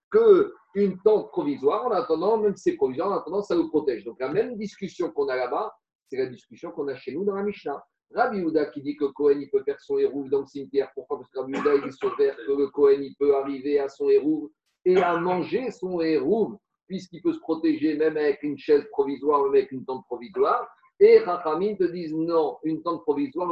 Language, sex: French, male